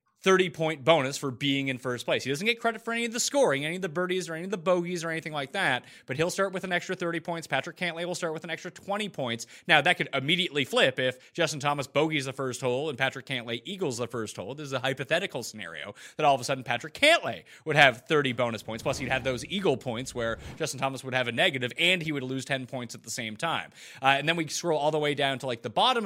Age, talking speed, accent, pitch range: 30-49, 275 wpm, American, 125-175 Hz